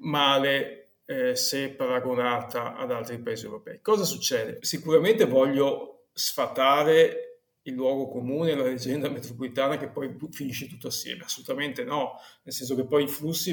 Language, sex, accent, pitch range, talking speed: Italian, male, native, 130-165 Hz, 140 wpm